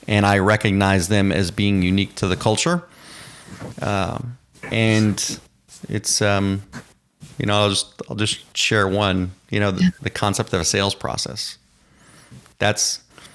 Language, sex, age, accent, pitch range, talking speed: English, male, 30-49, American, 95-115 Hz, 145 wpm